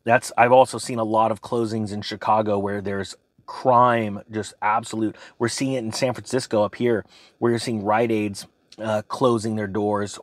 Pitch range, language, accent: 105-125 Hz, English, American